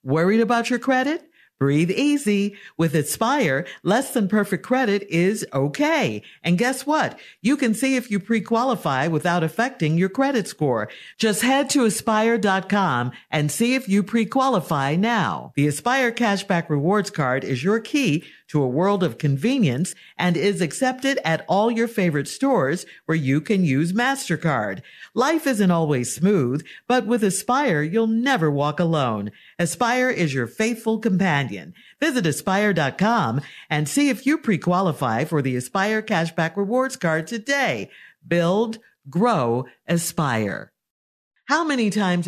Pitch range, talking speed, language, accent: 155-240 Hz, 140 wpm, English, American